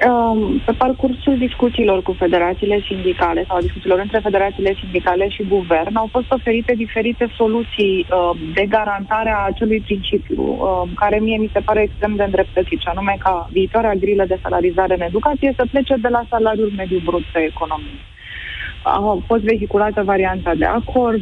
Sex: female